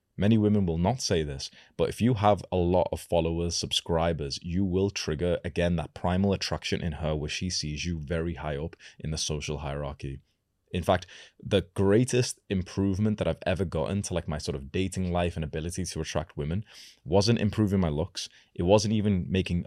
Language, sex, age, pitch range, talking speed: English, male, 20-39, 80-100 Hz, 195 wpm